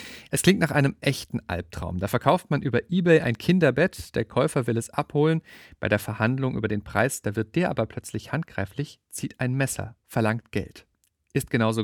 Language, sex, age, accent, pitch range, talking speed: German, male, 40-59, German, 105-130 Hz, 190 wpm